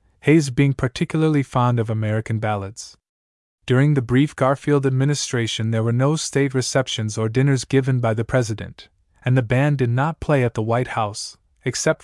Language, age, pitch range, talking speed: English, 30-49, 110-135 Hz, 170 wpm